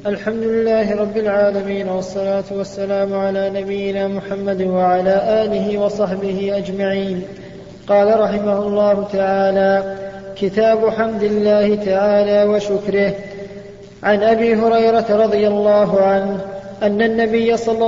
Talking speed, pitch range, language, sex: 105 wpm, 200-215 Hz, Arabic, male